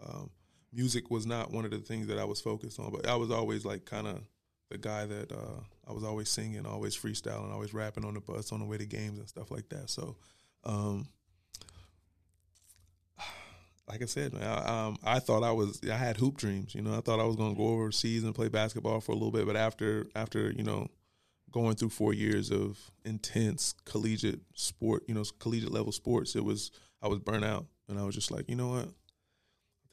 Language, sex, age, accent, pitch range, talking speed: English, male, 20-39, American, 105-115 Hz, 215 wpm